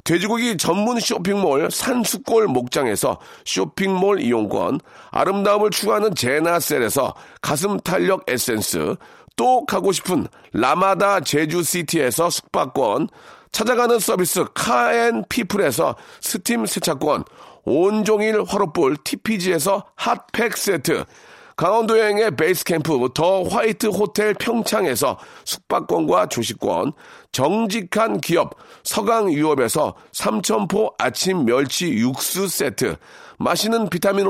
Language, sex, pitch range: Korean, male, 185-235 Hz